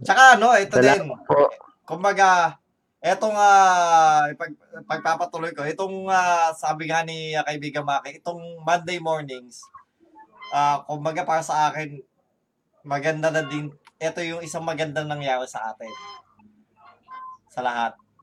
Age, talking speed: 20-39, 130 wpm